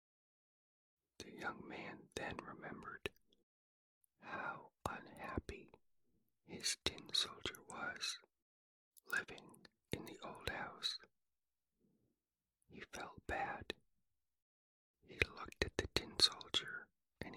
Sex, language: male, English